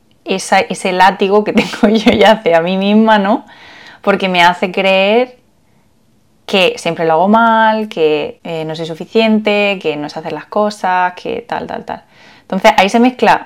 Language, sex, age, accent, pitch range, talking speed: Spanish, female, 20-39, Spanish, 160-220 Hz, 175 wpm